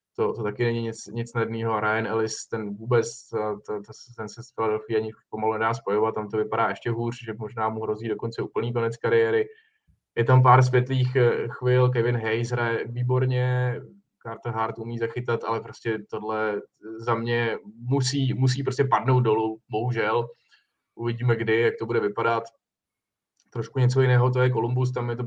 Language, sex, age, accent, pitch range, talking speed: Czech, male, 20-39, native, 115-125 Hz, 175 wpm